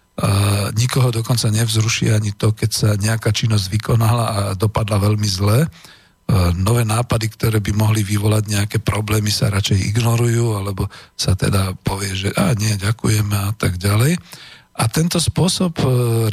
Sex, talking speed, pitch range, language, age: male, 150 wpm, 110-135 Hz, Slovak, 50-69